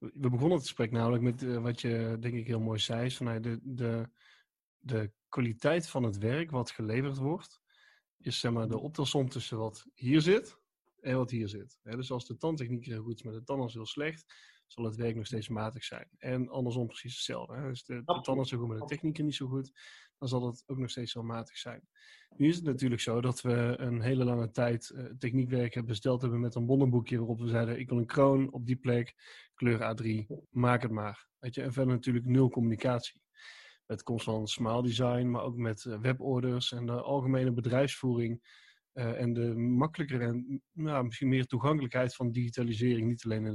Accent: Dutch